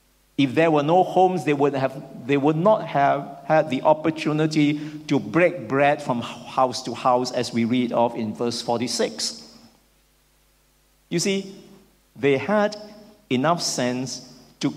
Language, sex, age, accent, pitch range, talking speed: English, male, 50-69, Malaysian, 125-165 Hz, 140 wpm